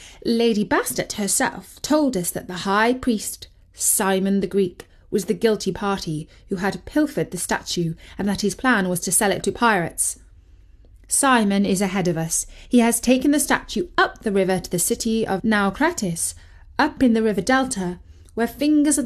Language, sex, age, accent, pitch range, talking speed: English, female, 30-49, British, 185-270 Hz, 180 wpm